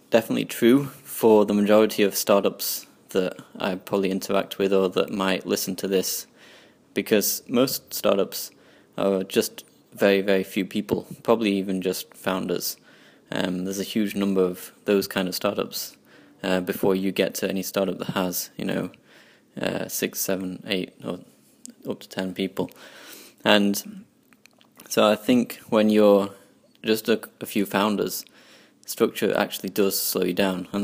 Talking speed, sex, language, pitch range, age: 155 wpm, male, English, 95-105 Hz, 20-39